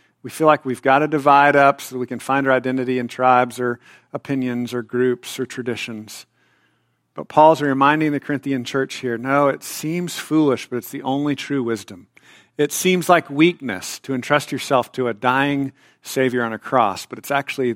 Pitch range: 110-140 Hz